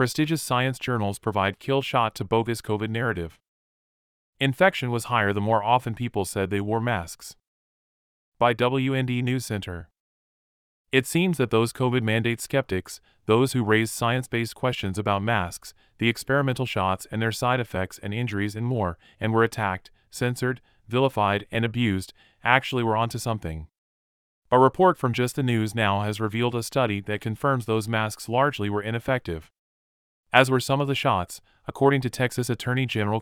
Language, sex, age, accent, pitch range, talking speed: English, male, 30-49, American, 100-125 Hz, 165 wpm